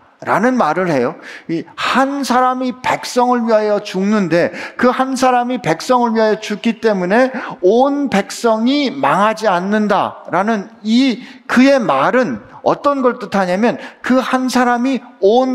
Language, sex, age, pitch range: Korean, male, 50-69, 205-270 Hz